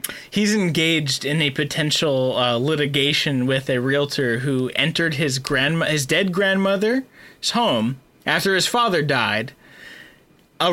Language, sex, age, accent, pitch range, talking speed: English, male, 20-39, American, 160-215 Hz, 130 wpm